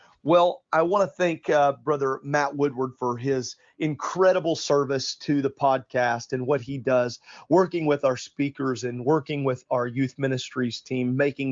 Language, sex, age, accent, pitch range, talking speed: English, male, 40-59, American, 130-160 Hz, 165 wpm